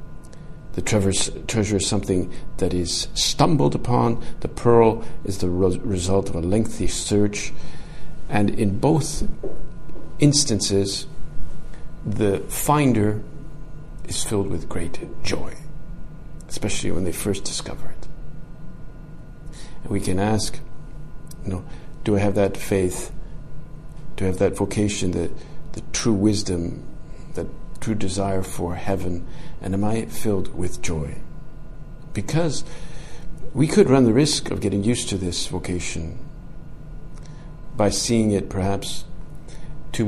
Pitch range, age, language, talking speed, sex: 95-140 Hz, 50-69, English, 125 wpm, male